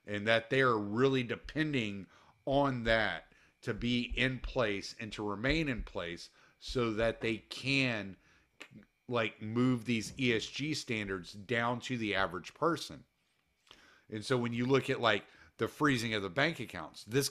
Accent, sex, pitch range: American, male, 105-130 Hz